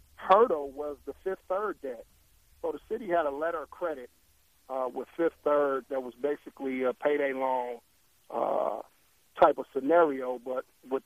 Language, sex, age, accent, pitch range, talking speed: English, male, 40-59, American, 125-150 Hz, 165 wpm